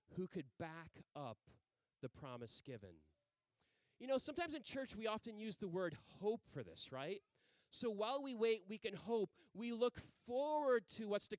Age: 30-49